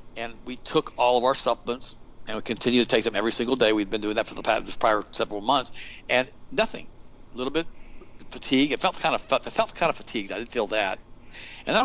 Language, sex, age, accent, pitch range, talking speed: English, male, 50-69, American, 110-140 Hz, 220 wpm